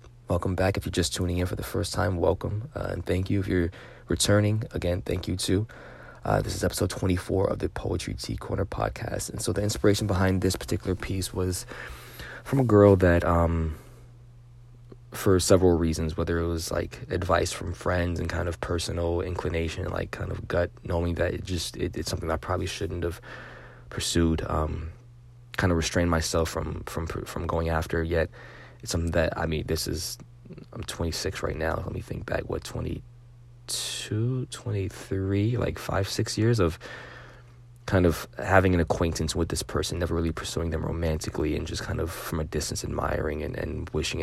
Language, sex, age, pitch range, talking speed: English, male, 20-39, 85-115 Hz, 185 wpm